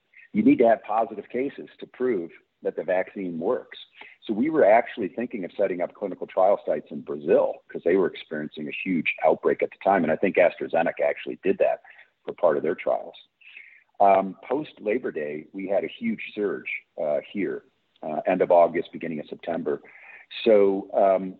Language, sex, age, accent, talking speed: English, male, 50-69, American, 190 wpm